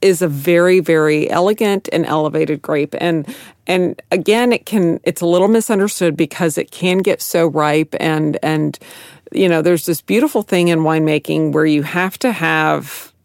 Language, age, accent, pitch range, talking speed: English, 40-59, American, 155-175 Hz, 170 wpm